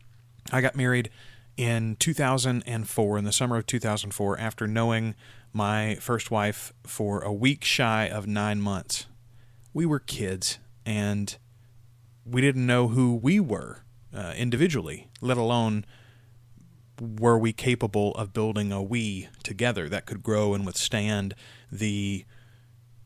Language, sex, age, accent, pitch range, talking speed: English, male, 30-49, American, 105-120 Hz, 130 wpm